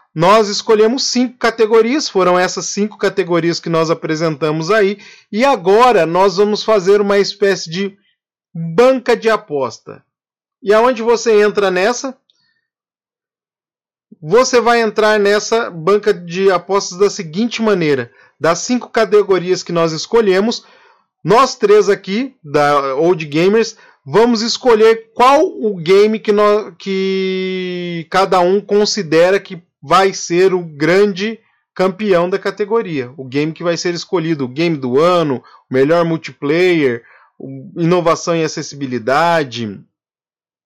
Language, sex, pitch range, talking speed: Portuguese, male, 170-225 Hz, 120 wpm